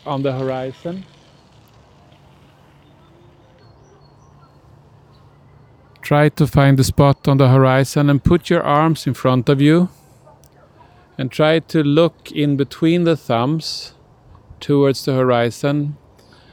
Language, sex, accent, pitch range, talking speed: Swedish, male, Norwegian, 130-150 Hz, 110 wpm